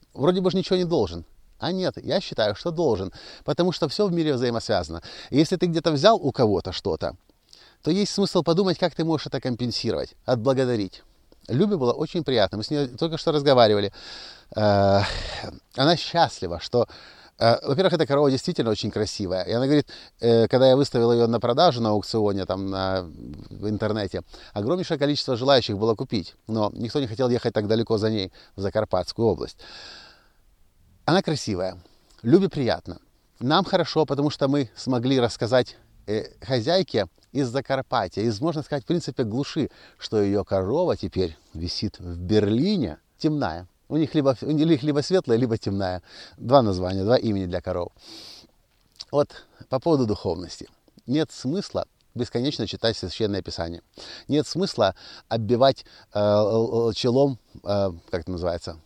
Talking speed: 150 wpm